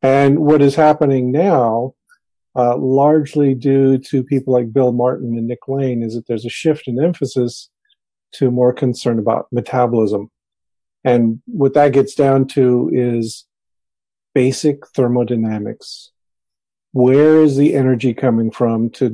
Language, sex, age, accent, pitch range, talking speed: English, male, 50-69, American, 120-145 Hz, 140 wpm